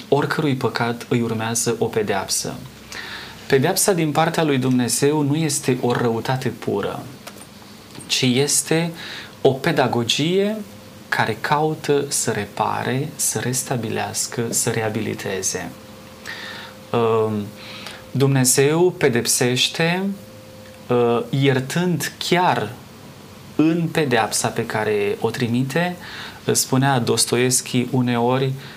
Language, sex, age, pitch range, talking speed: Romanian, male, 30-49, 115-145 Hz, 85 wpm